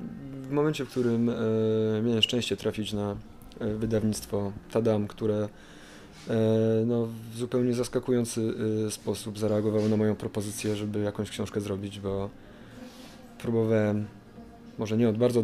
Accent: native